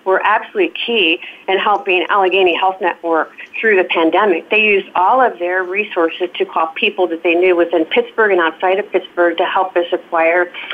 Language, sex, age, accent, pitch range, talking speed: English, female, 40-59, American, 170-200 Hz, 185 wpm